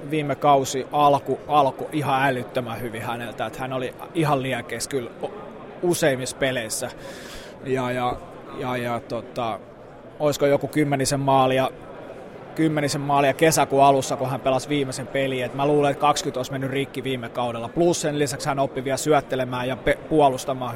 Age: 20-39